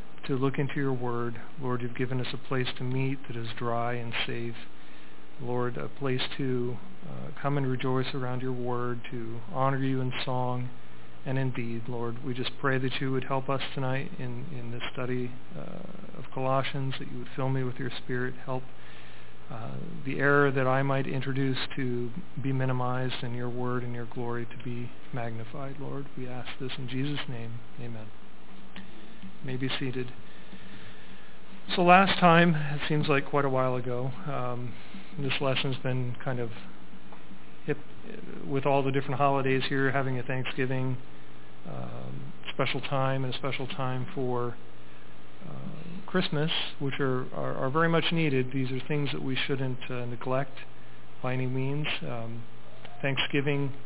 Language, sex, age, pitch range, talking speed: English, male, 40-59, 120-140 Hz, 165 wpm